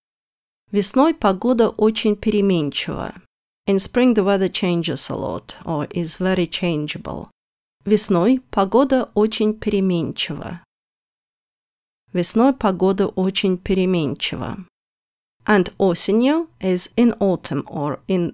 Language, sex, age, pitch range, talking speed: English, female, 30-49, 180-230 Hz, 100 wpm